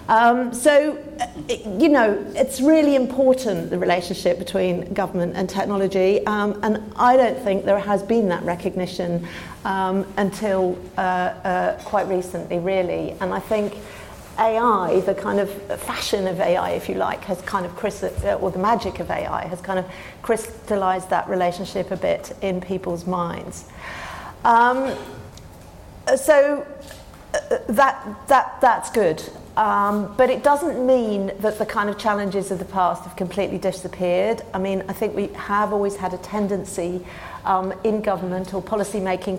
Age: 40-59